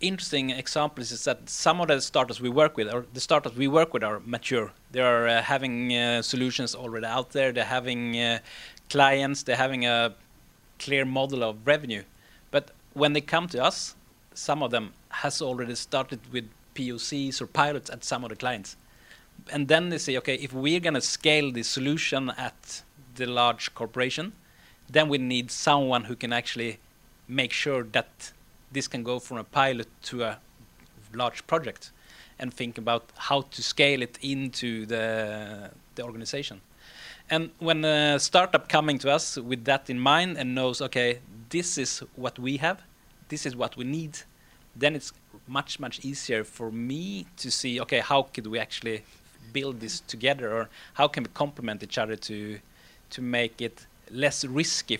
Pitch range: 115-140 Hz